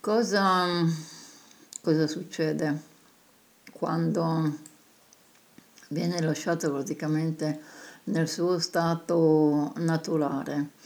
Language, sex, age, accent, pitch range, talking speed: Italian, female, 60-79, native, 155-190 Hz, 60 wpm